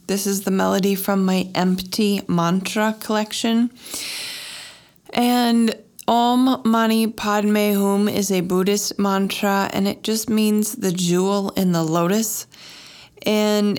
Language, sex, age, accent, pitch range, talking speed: English, female, 20-39, American, 170-205 Hz, 120 wpm